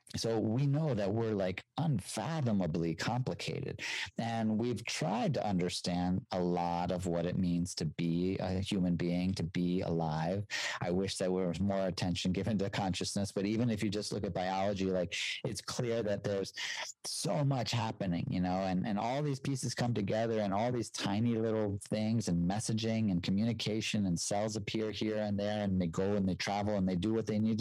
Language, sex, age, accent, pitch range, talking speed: English, male, 40-59, American, 90-115 Hz, 195 wpm